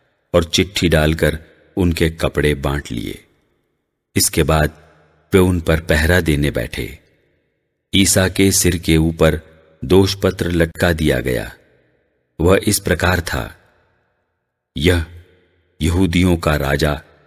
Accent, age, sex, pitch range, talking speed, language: Indian, 50-69, male, 75-95 Hz, 110 wpm, English